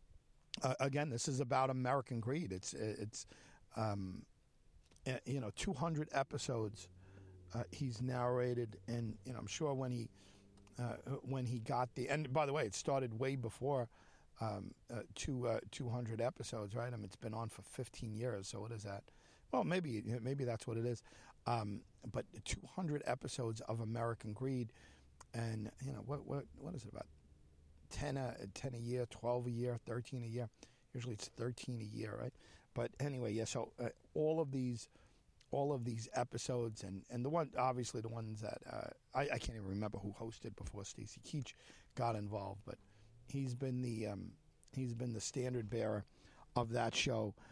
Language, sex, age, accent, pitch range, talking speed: English, male, 50-69, American, 110-130 Hz, 180 wpm